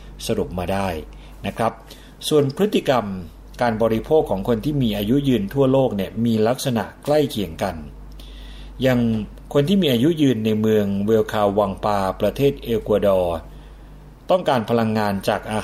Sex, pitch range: male, 100-125 Hz